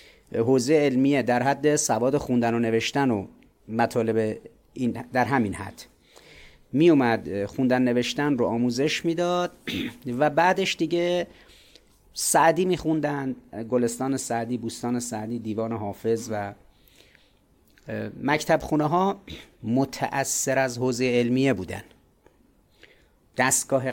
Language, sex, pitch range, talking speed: Persian, male, 120-170 Hz, 105 wpm